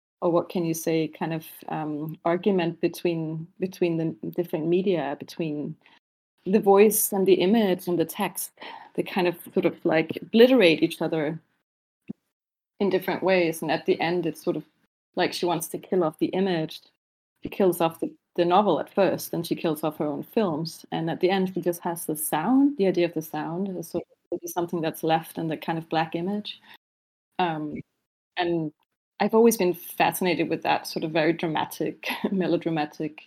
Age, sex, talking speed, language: 30-49, female, 185 wpm, English